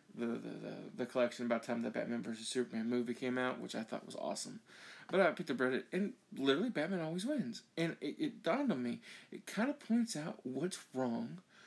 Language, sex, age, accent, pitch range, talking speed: English, male, 40-59, American, 180-240 Hz, 220 wpm